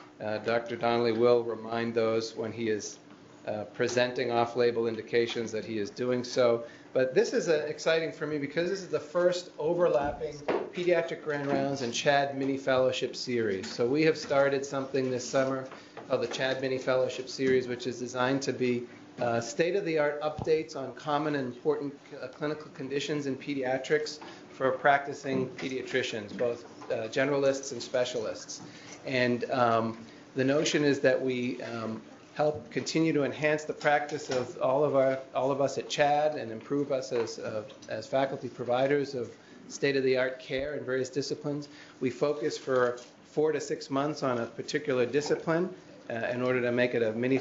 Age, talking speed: 40-59, 175 wpm